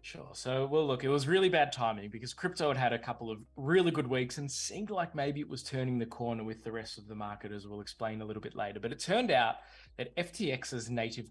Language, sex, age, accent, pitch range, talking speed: English, male, 20-39, Australian, 115-145 Hz, 255 wpm